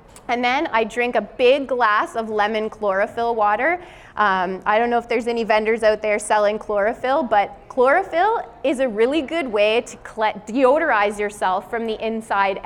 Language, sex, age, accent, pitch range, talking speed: English, female, 20-39, American, 210-255 Hz, 170 wpm